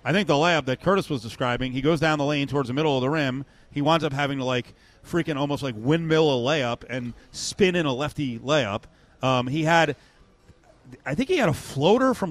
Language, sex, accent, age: English, male, American, 40-59